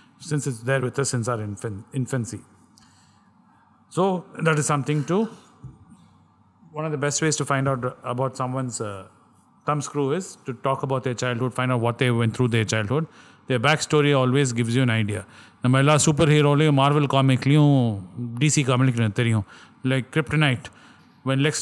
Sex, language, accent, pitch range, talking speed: male, Tamil, native, 120-145 Hz, 170 wpm